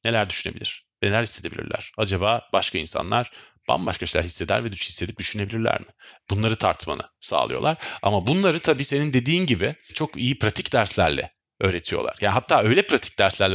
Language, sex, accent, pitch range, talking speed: Turkish, male, native, 105-140 Hz, 150 wpm